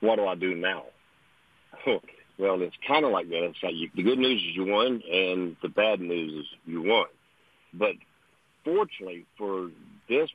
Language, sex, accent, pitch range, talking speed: English, male, American, 85-100 Hz, 185 wpm